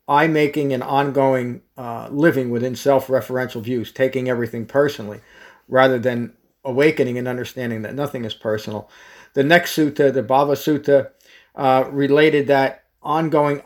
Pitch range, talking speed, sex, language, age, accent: 125-150 Hz, 135 wpm, male, English, 50-69, American